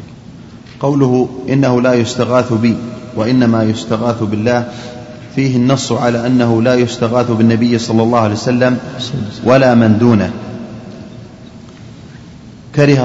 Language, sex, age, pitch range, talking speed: Arabic, male, 30-49, 110-125 Hz, 105 wpm